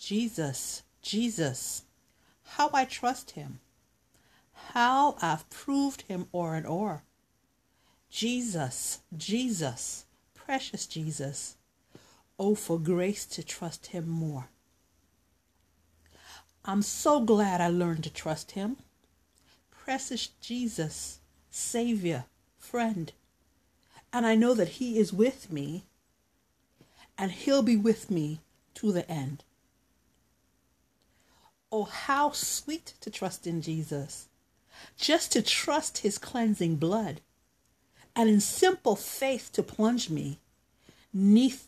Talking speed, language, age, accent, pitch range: 105 wpm, English, 60-79, American, 150-235 Hz